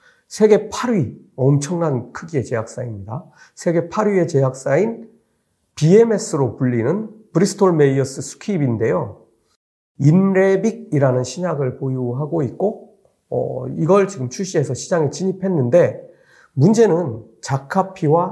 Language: Korean